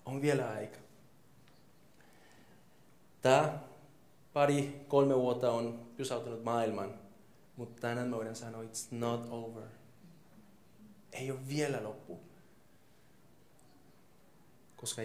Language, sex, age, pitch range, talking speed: Finnish, male, 30-49, 115-150 Hz, 90 wpm